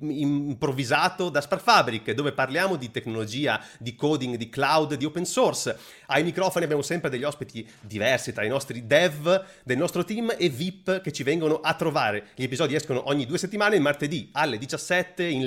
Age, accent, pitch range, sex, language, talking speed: 30-49, native, 125-170 Hz, male, Italian, 180 wpm